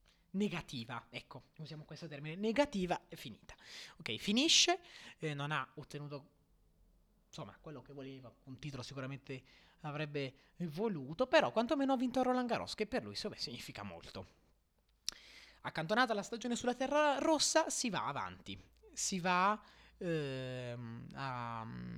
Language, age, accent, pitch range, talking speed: Italian, 20-39, native, 135-215 Hz, 135 wpm